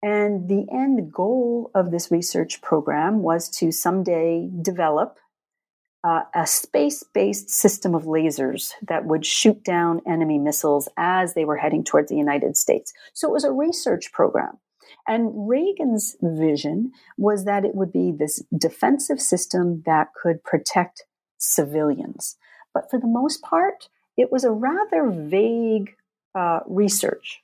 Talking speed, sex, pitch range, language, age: 140 wpm, female, 160-220 Hz, English, 50-69